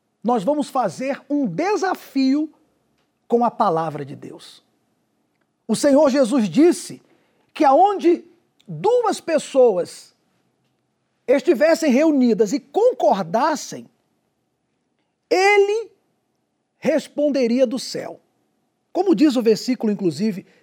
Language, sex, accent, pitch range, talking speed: Portuguese, male, Brazilian, 225-315 Hz, 90 wpm